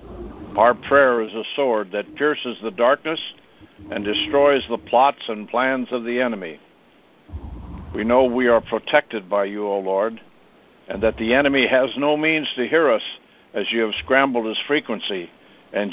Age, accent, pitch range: 60-79, American, 110-135 Hz